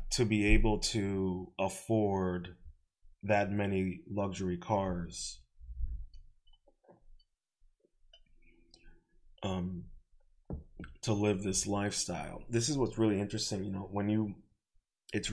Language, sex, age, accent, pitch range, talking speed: English, male, 20-39, American, 90-105 Hz, 95 wpm